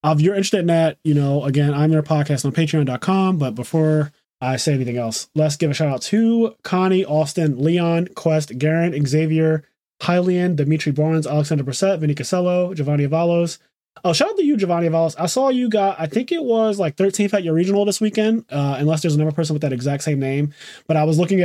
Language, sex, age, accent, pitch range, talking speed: English, male, 20-39, American, 140-175 Hz, 215 wpm